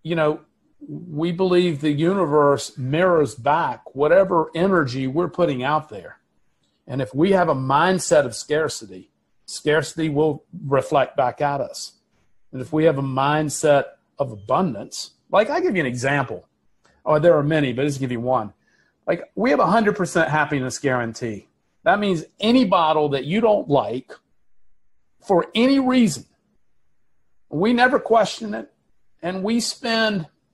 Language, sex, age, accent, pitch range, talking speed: English, male, 40-59, American, 145-195 Hz, 155 wpm